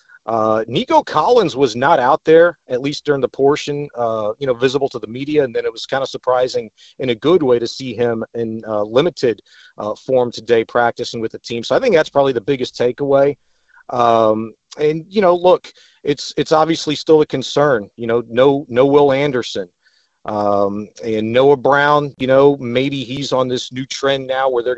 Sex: male